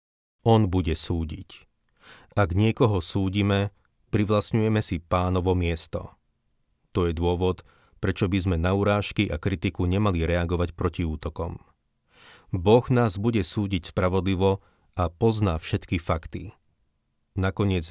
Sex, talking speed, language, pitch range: male, 115 wpm, Slovak, 90-105 Hz